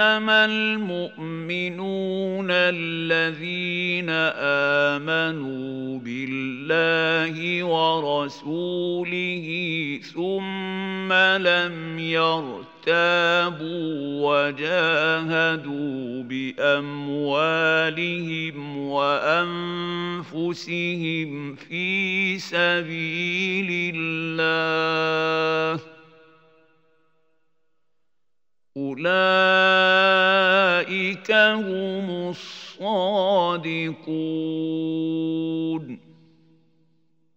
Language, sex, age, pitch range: Arabic, male, 50-69, 160-180 Hz